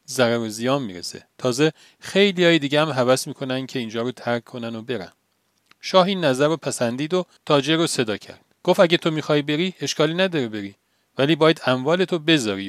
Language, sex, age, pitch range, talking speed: Persian, male, 40-59, 120-165 Hz, 180 wpm